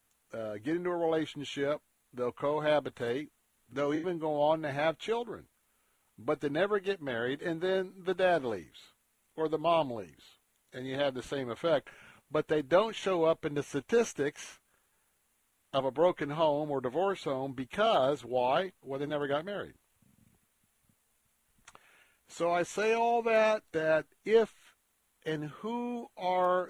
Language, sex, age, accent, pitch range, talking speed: English, male, 50-69, American, 130-175 Hz, 150 wpm